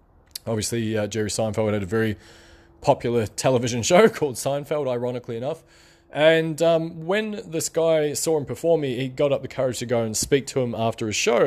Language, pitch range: English, 110-145 Hz